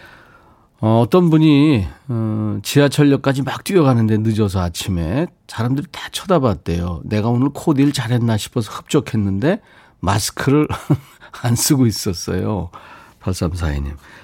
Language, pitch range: Korean, 100-145 Hz